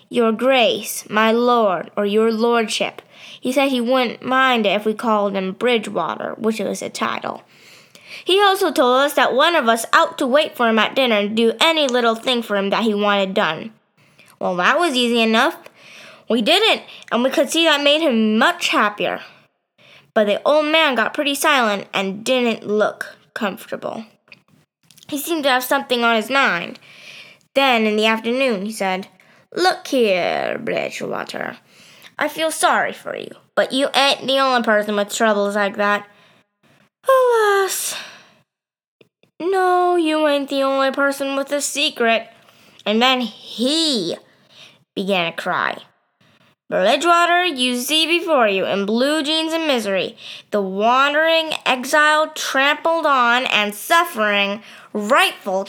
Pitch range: 215-300 Hz